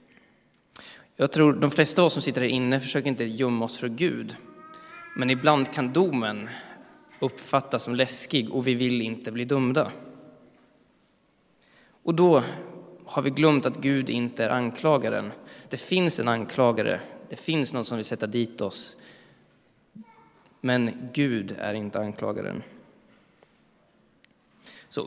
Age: 20-39